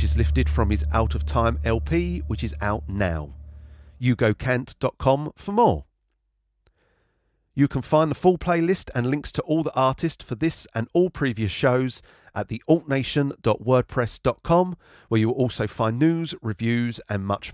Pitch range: 105-150 Hz